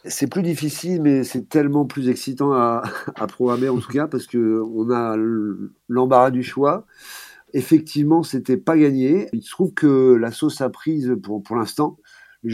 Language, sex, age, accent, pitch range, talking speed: French, male, 50-69, French, 120-145 Hz, 175 wpm